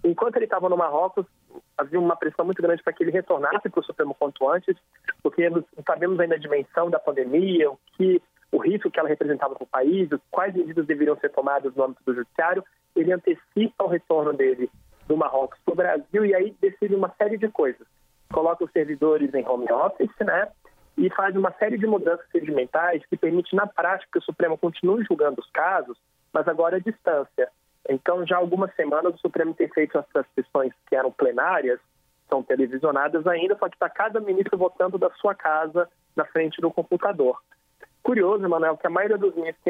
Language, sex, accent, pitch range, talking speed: Portuguese, male, Brazilian, 155-200 Hz, 190 wpm